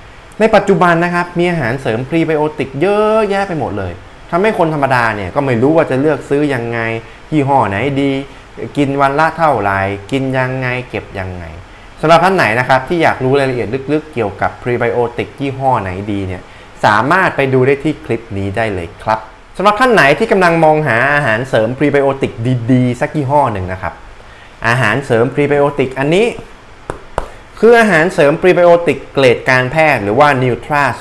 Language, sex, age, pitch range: Thai, male, 20-39, 105-145 Hz